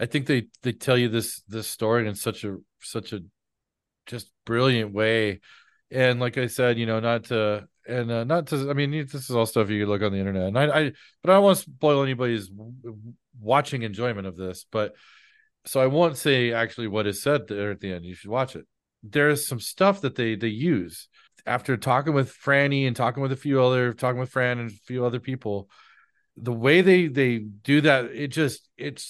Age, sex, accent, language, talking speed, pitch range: 40-59, male, American, English, 215 wpm, 110-140 Hz